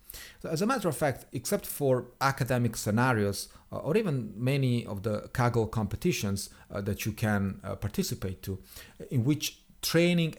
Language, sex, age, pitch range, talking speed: English, male, 40-59, 105-140 Hz, 160 wpm